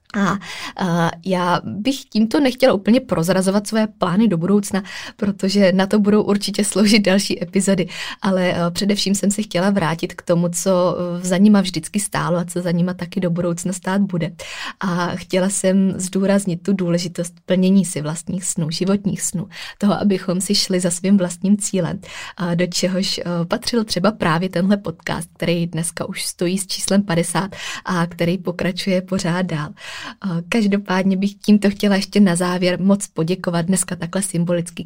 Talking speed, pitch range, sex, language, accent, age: 160 wpm, 175-200 Hz, female, Czech, native, 20-39